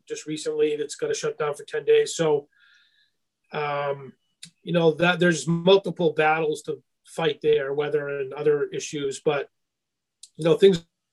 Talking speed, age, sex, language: 160 wpm, 40-59, male, English